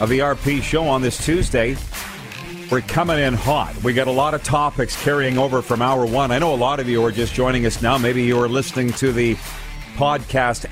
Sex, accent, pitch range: male, American, 105-140 Hz